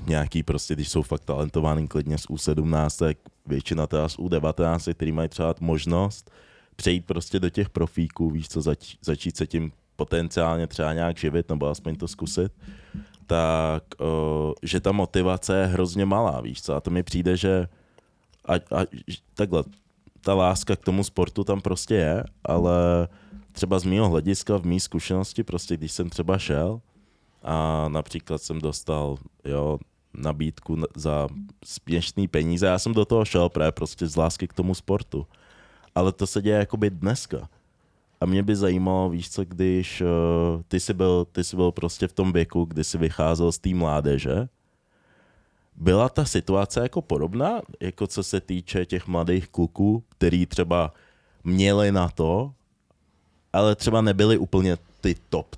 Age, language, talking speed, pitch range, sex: 20-39, Czech, 160 wpm, 80-95 Hz, male